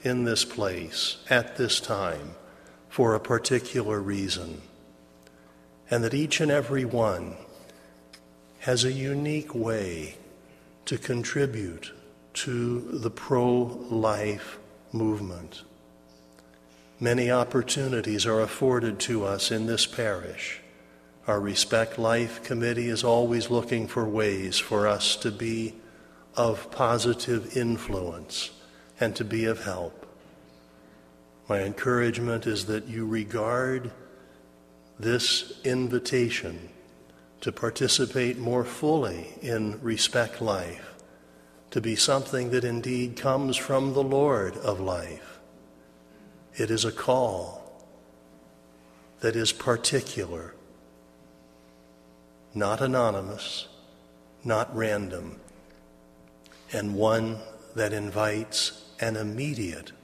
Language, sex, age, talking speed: English, male, 50-69, 100 wpm